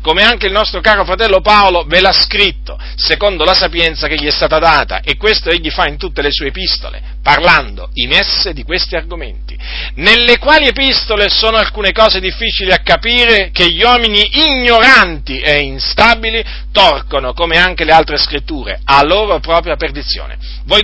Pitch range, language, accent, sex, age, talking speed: 135-215 Hz, Italian, native, male, 40-59, 170 wpm